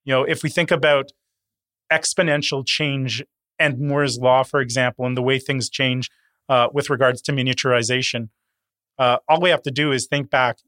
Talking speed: 180 wpm